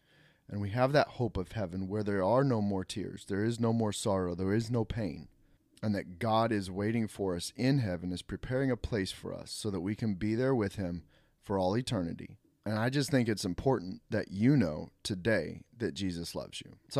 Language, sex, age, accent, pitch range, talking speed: English, male, 30-49, American, 100-130 Hz, 220 wpm